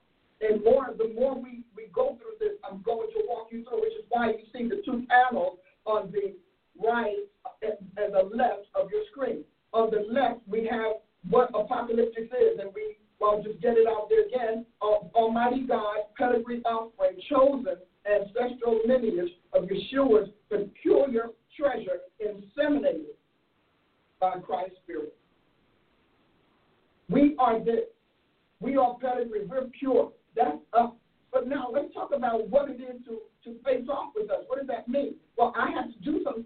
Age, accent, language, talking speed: 50-69, American, English, 165 wpm